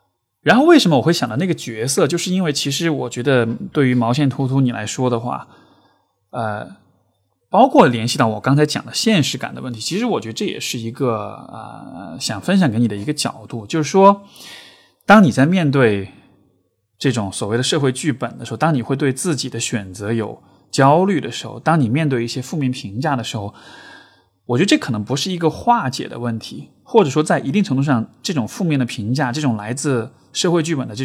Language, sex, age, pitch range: Chinese, male, 20-39, 115-155 Hz